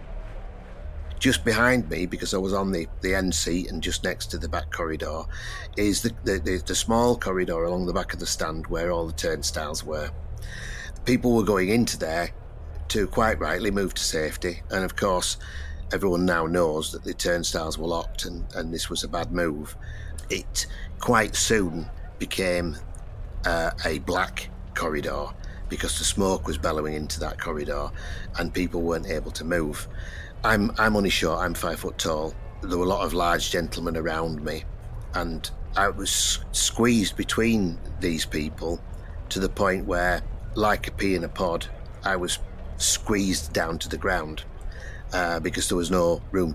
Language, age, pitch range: English, 50-69, 80-95 Hz